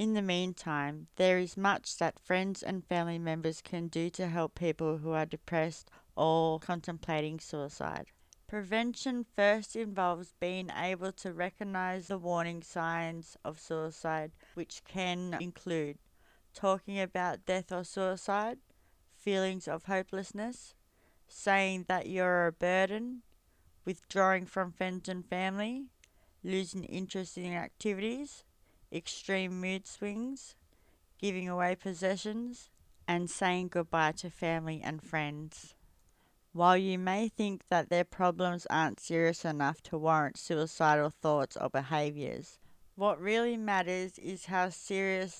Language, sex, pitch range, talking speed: English, female, 165-190 Hz, 125 wpm